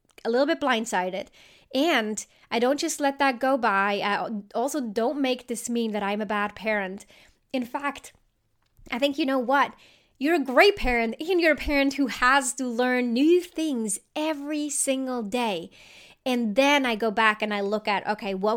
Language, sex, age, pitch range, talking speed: English, female, 20-39, 215-280 Hz, 185 wpm